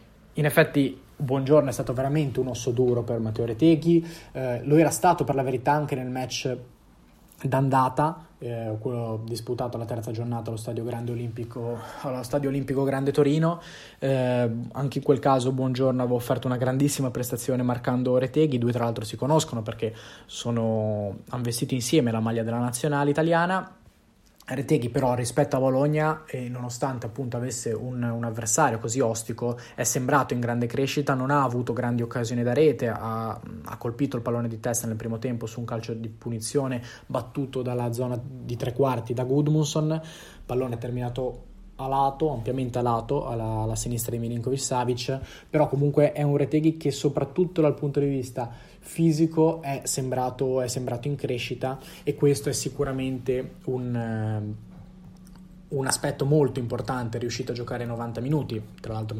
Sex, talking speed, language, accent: male, 165 wpm, Italian, native